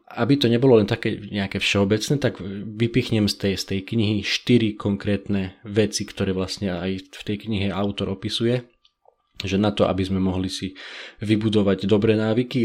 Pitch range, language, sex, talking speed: 95-115 Hz, Slovak, male, 165 wpm